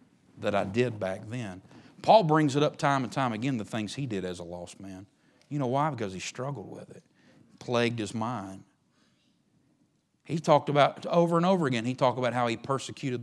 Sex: male